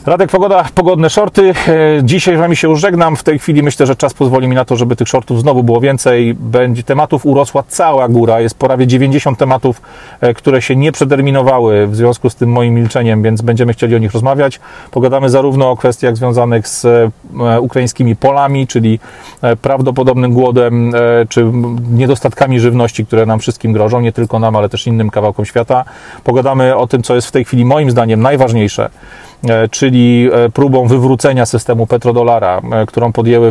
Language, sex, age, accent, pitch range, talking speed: Polish, male, 40-59, native, 115-135 Hz, 170 wpm